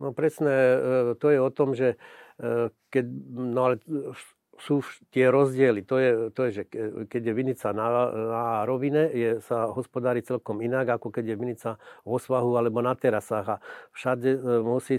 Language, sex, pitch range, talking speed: Slovak, male, 115-130 Hz, 165 wpm